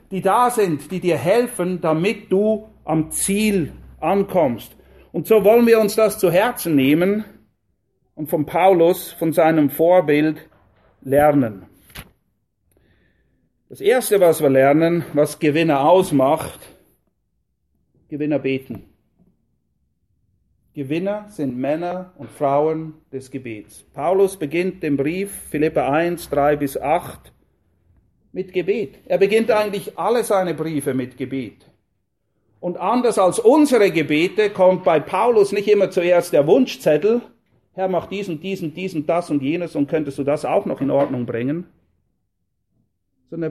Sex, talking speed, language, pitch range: male, 125 wpm, English, 135-190 Hz